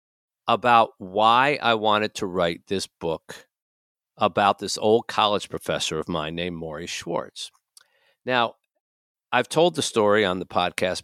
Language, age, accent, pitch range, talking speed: English, 50-69, American, 85-110 Hz, 140 wpm